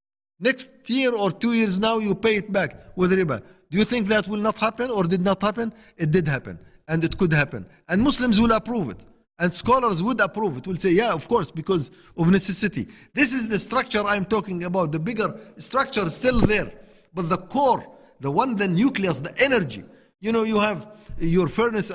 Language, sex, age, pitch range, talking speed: English, male, 50-69, 165-220 Hz, 210 wpm